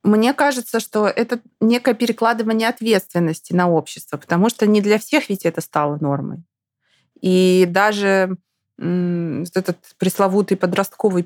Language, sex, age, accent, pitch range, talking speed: Russian, female, 20-39, native, 170-215 Hz, 125 wpm